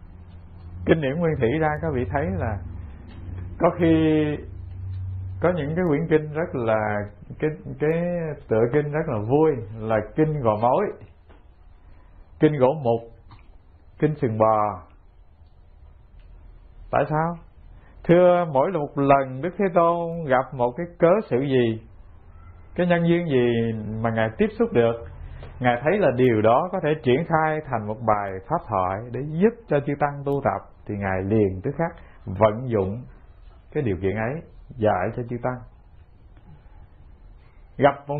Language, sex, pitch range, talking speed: English, male, 95-155 Hz, 150 wpm